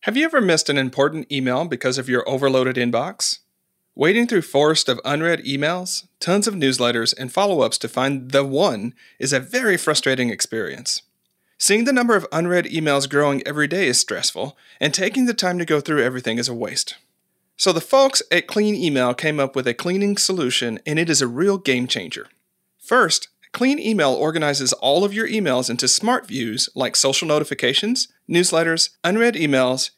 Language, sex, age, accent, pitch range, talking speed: English, male, 40-59, American, 135-195 Hz, 180 wpm